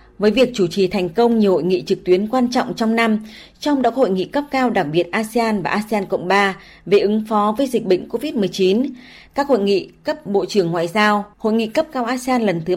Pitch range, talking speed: 190-240 Hz, 235 wpm